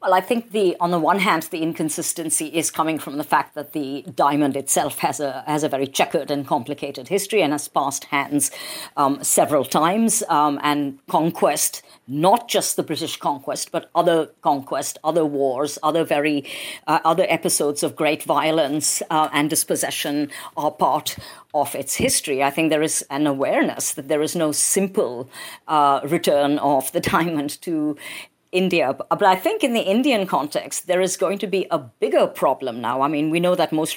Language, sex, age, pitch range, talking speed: English, female, 50-69, 150-190 Hz, 185 wpm